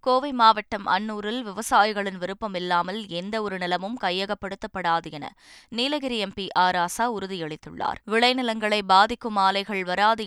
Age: 20-39